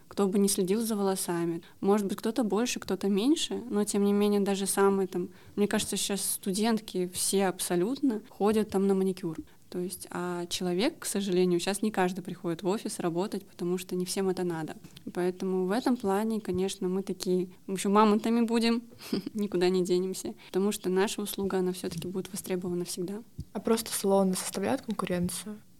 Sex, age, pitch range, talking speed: female, 20-39, 185-210 Hz, 175 wpm